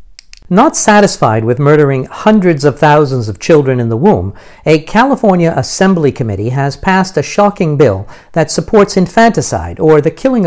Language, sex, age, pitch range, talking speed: English, male, 60-79, 135-195 Hz, 155 wpm